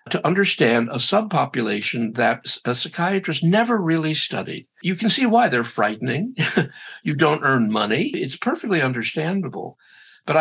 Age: 60-79